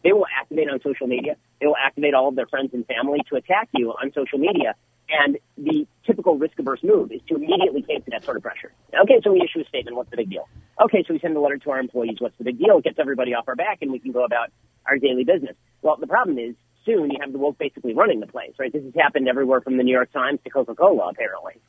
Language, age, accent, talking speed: English, 40-59, American, 275 wpm